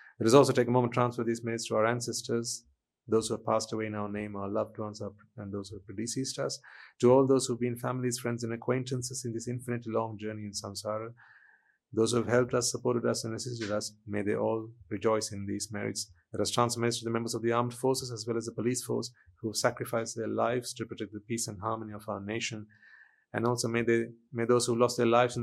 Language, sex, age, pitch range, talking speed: English, male, 30-49, 110-120 Hz, 250 wpm